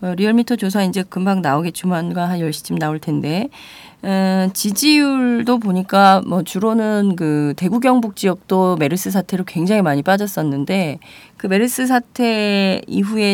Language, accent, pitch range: Korean, native, 170-220 Hz